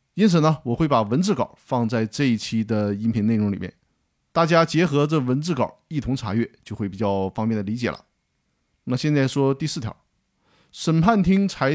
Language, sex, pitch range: Chinese, male, 115-155 Hz